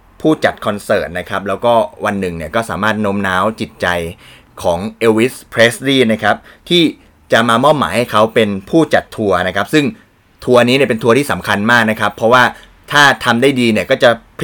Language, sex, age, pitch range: Thai, male, 20-39, 100-125 Hz